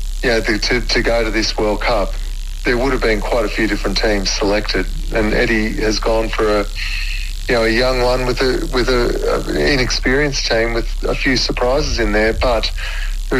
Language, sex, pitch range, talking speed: English, male, 100-115 Hz, 200 wpm